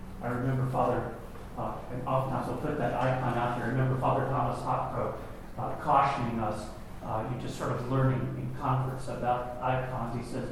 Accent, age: American, 40-59